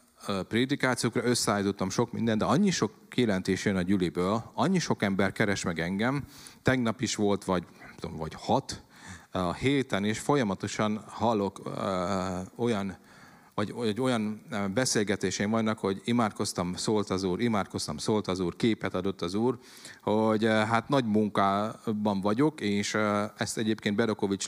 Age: 40-59